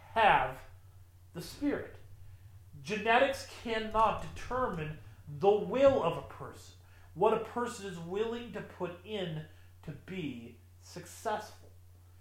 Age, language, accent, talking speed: 40-59, English, American, 110 wpm